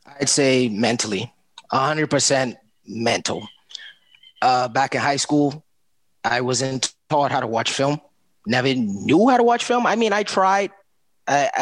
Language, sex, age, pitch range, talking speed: English, male, 20-39, 125-165 Hz, 145 wpm